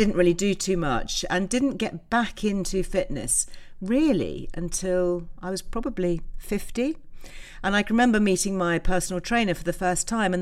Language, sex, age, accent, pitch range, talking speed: English, female, 50-69, British, 145-200 Hz, 165 wpm